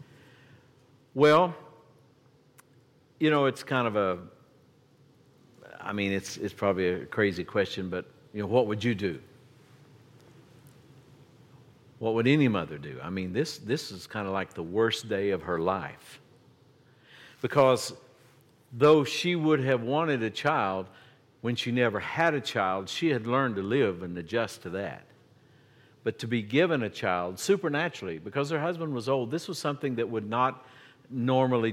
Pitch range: 120-145 Hz